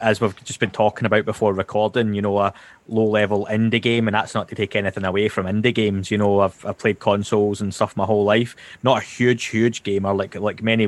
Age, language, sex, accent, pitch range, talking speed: 20-39, English, male, British, 100-110 Hz, 245 wpm